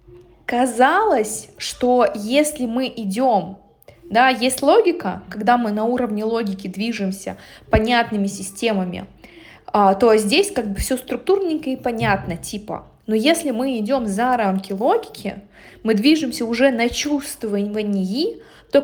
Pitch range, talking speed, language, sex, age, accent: 210-270 Hz, 120 wpm, Russian, female, 20-39, native